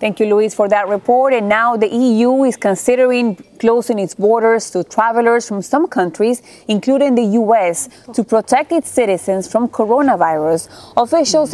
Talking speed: 155 wpm